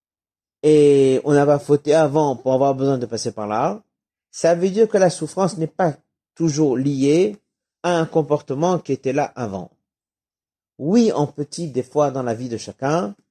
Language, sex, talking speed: French, male, 175 wpm